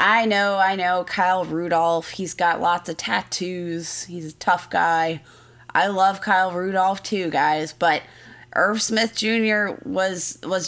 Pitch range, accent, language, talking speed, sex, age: 165-210 Hz, American, English, 150 wpm, female, 20-39